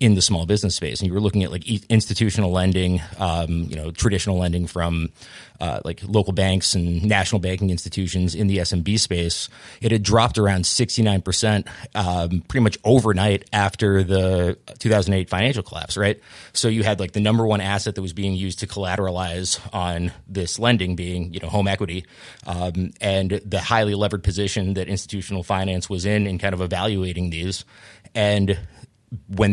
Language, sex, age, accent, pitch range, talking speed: English, male, 30-49, American, 90-105 Hz, 175 wpm